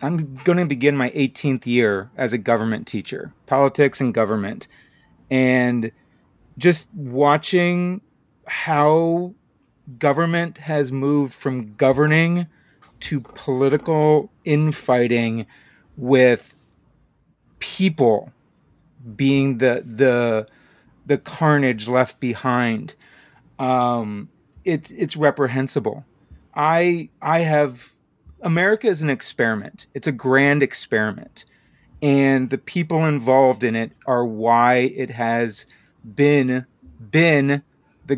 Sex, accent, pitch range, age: male, American, 125-150 Hz, 30-49